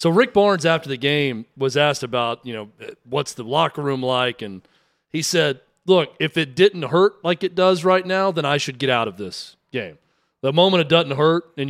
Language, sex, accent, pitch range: English, male, American, 140-180 Hz